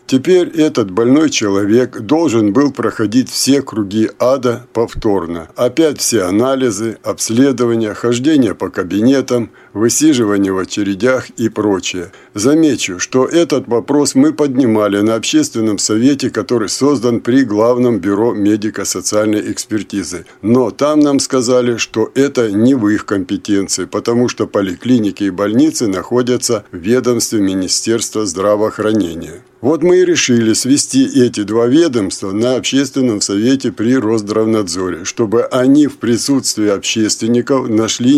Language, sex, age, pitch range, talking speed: Russian, male, 60-79, 105-130 Hz, 125 wpm